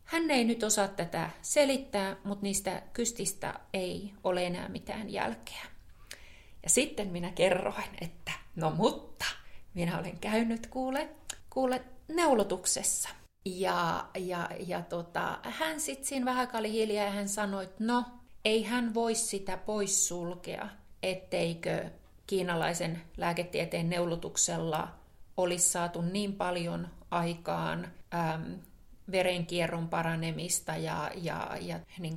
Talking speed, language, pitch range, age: 115 wpm, Finnish, 170-215 Hz, 30-49